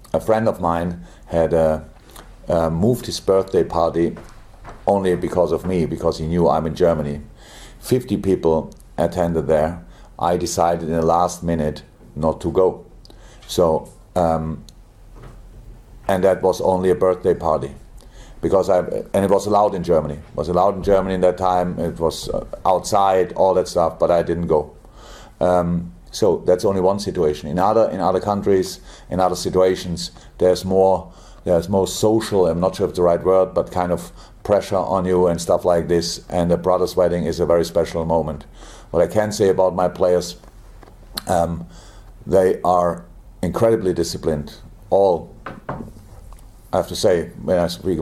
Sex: male